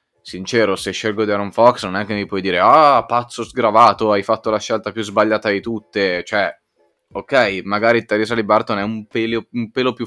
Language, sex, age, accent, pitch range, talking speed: Italian, male, 20-39, native, 95-110 Hz, 205 wpm